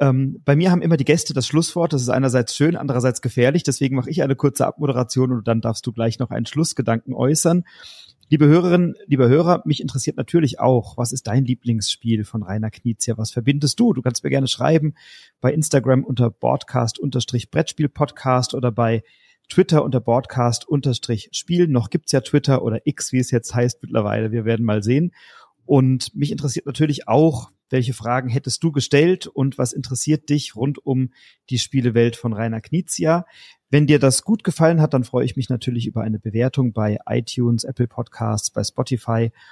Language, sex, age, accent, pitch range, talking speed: German, male, 30-49, German, 120-145 Hz, 180 wpm